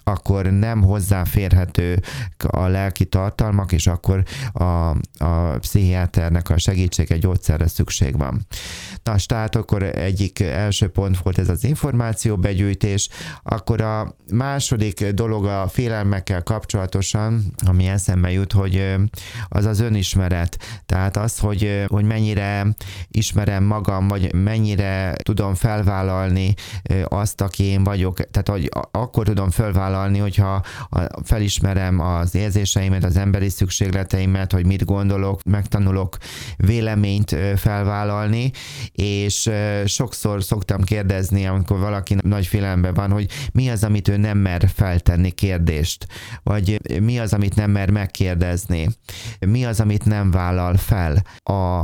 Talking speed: 125 wpm